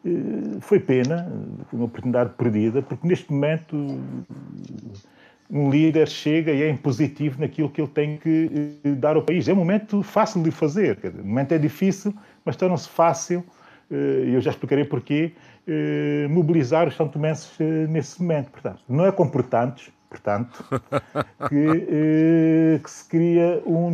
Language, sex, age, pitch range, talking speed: Portuguese, male, 40-59, 120-160 Hz, 145 wpm